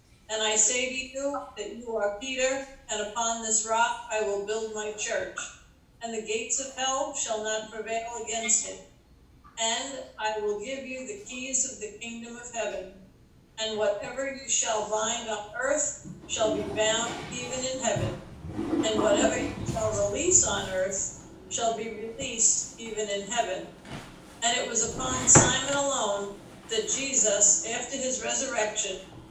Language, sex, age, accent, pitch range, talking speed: English, female, 50-69, American, 210-245 Hz, 160 wpm